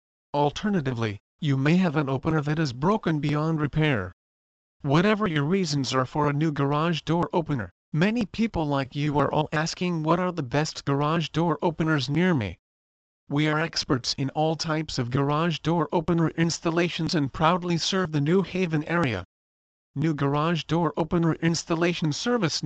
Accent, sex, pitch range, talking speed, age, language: American, male, 140-170 Hz, 160 wpm, 40-59, English